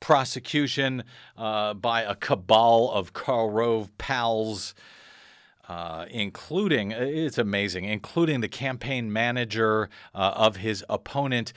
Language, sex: English, male